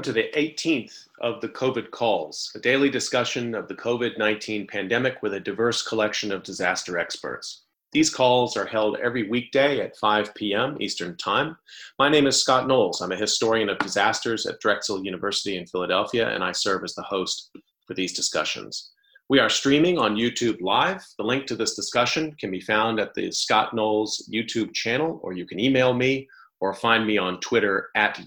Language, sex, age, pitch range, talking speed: English, male, 40-59, 105-135 Hz, 185 wpm